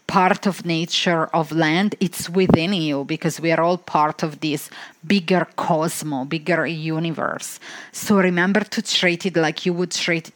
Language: English